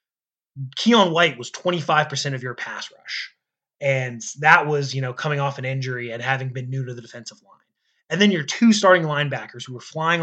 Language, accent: English, American